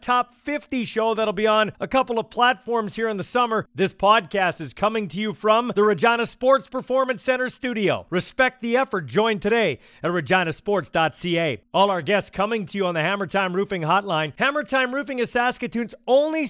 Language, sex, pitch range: English, male, 185-235 Hz